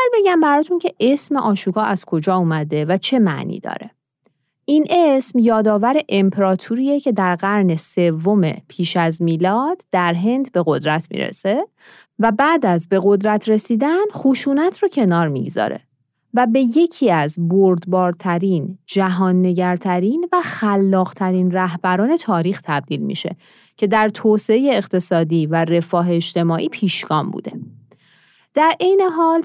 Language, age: Persian, 30-49